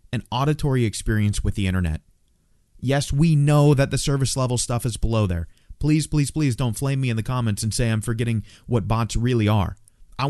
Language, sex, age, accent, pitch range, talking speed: English, male, 30-49, American, 105-135 Hz, 205 wpm